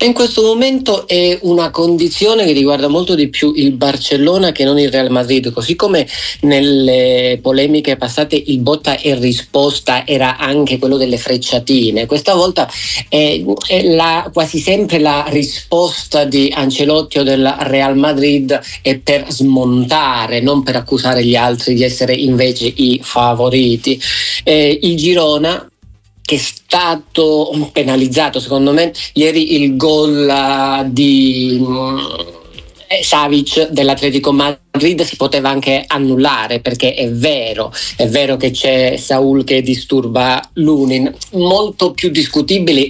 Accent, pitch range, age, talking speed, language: native, 130-150 Hz, 40-59, 130 wpm, Italian